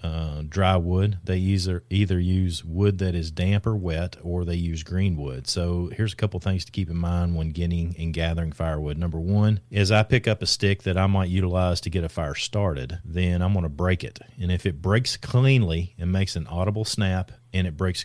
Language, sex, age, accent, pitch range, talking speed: English, male, 40-59, American, 90-105 Hz, 225 wpm